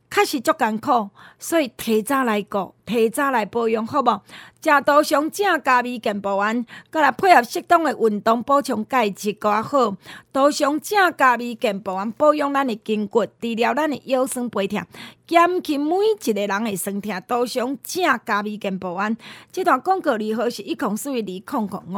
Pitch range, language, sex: 215-290 Hz, Chinese, female